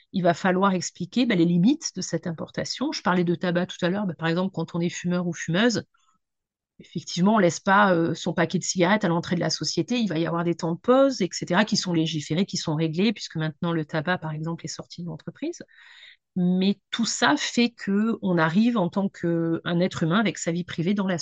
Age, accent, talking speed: 40-59, French, 235 wpm